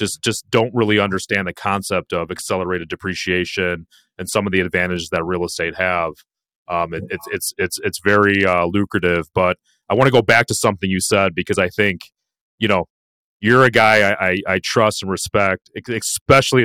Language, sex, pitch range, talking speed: English, male, 95-115 Hz, 190 wpm